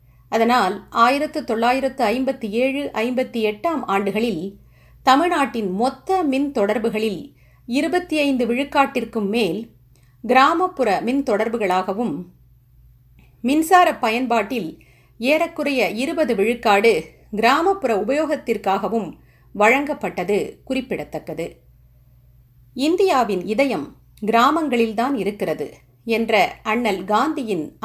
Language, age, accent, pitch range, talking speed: Tamil, 50-69, native, 195-265 Hz, 70 wpm